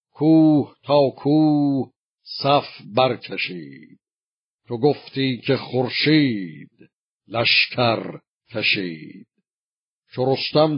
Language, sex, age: Persian, male, 60-79